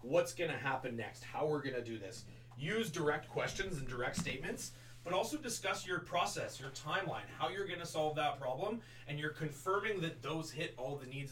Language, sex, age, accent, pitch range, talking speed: English, male, 30-49, American, 125-165 Hz, 210 wpm